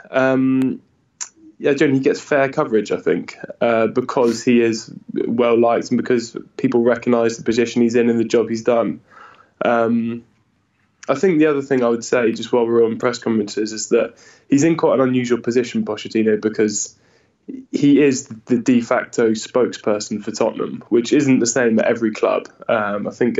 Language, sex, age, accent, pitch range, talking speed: English, male, 10-29, British, 110-130 Hz, 180 wpm